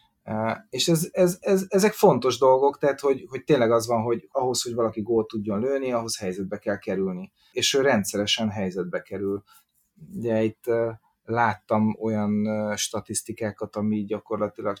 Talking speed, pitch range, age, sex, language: 145 wpm, 105-125 Hz, 30-49, male, Hungarian